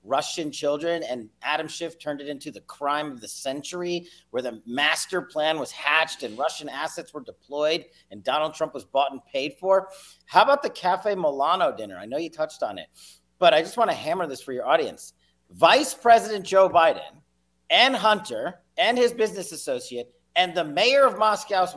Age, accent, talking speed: 40-59, American, 190 wpm